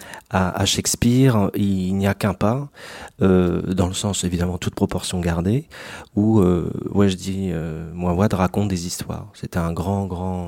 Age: 40-59